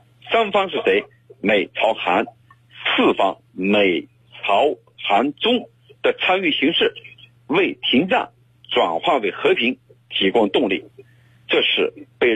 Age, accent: 50-69, native